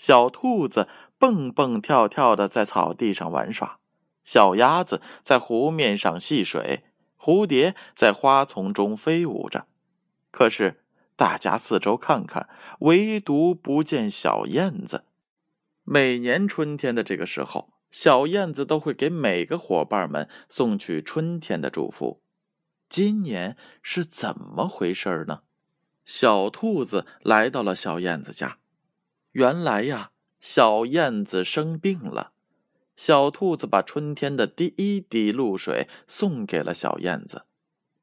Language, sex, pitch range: Chinese, male, 115-190 Hz